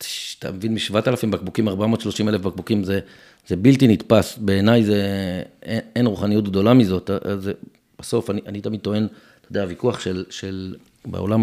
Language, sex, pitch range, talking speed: Hebrew, male, 95-125 Hz, 150 wpm